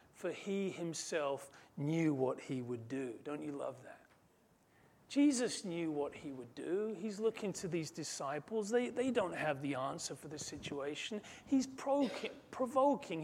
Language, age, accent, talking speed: English, 40-59, British, 160 wpm